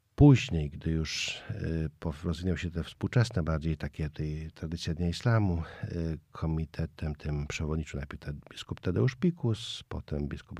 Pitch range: 80-115 Hz